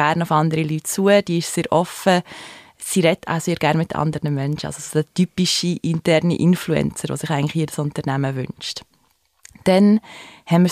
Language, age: German, 20-39